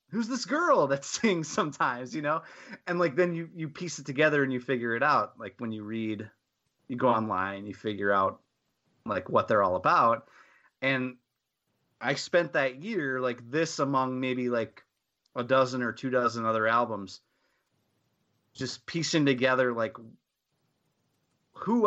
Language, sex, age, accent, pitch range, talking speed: English, male, 30-49, American, 120-150 Hz, 160 wpm